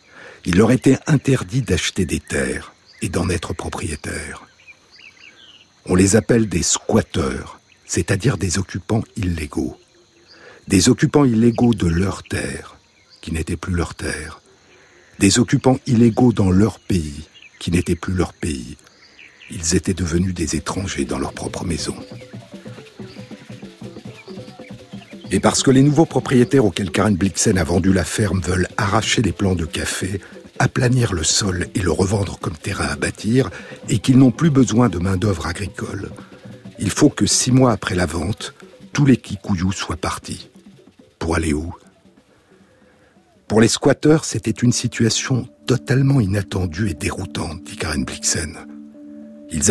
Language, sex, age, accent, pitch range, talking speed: French, male, 60-79, French, 85-120 Hz, 140 wpm